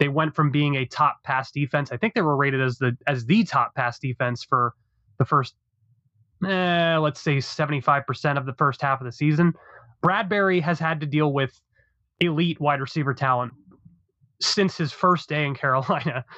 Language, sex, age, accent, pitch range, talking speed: English, male, 20-39, American, 130-160 Hz, 185 wpm